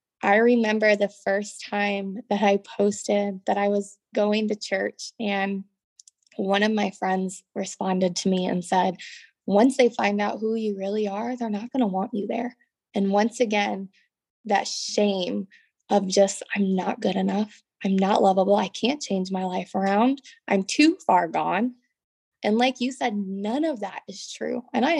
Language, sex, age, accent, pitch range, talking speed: English, female, 20-39, American, 195-235 Hz, 180 wpm